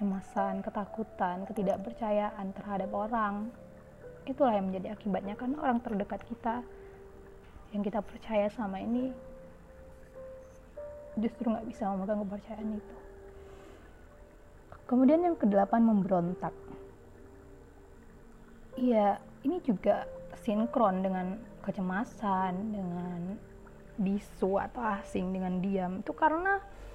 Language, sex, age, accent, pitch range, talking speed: Indonesian, female, 20-39, native, 195-245 Hz, 90 wpm